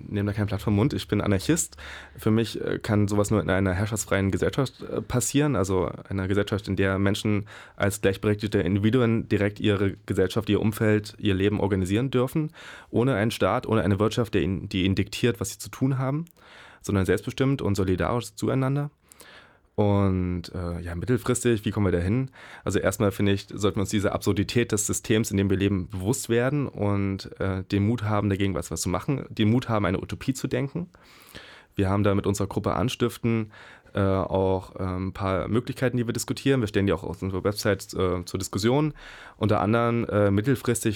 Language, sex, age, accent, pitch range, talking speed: German, male, 20-39, German, 95-120 Hz, 190 wpm